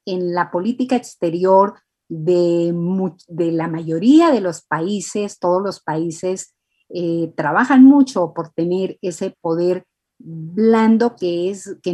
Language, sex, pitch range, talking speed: Spanish, female, 175-220 Hz, 120 wpm